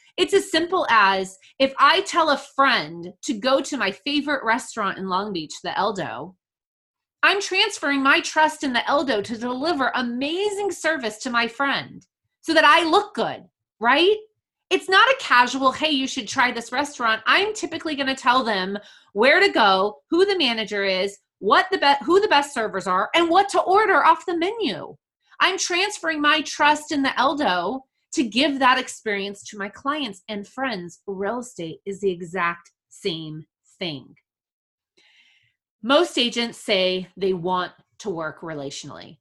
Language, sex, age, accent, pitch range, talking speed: English, female, 30-49, American, 185-290 Hz, 165 wpm